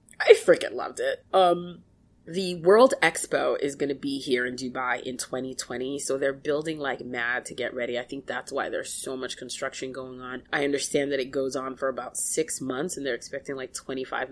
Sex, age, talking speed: female, 20-39, 210 wpm